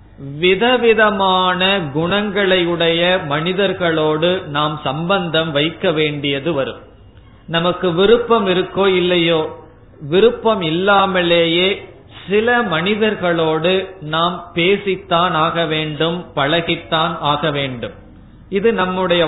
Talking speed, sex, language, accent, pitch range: 80 wpm, male, Tamil, native, 150-190 Hz